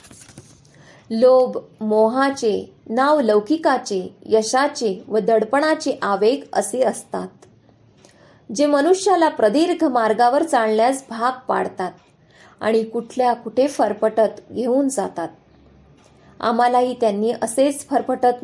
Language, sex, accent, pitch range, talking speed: Marathi, female, native, 220-275 Hz, 90 wpm